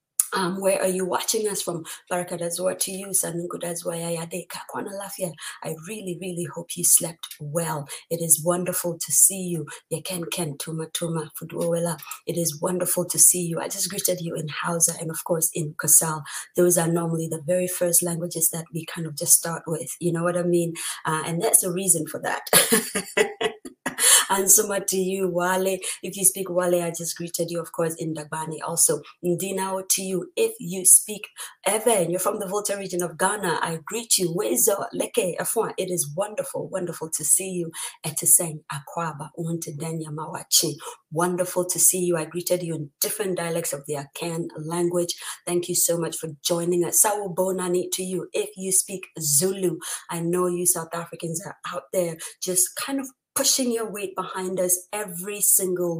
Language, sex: English, female